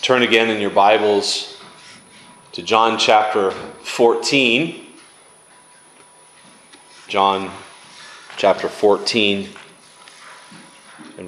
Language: English